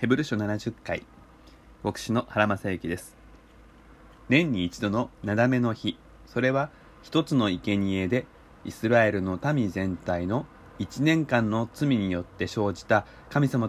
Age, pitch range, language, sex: 20-39, 100-130 Hz, Japanese, male